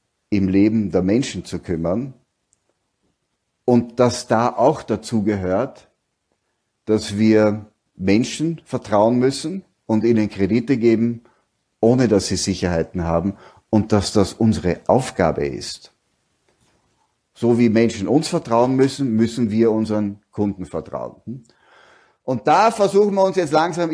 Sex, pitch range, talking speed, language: male, 105-140 Hz, 125 wpm, German